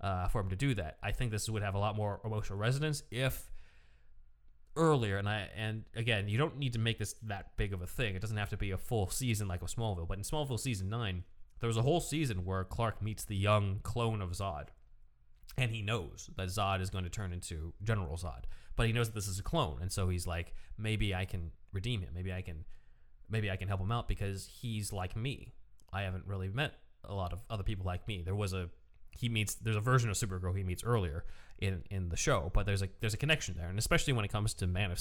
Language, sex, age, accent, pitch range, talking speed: English, male, 20-39, American, 90-115 Hz, 250 wpm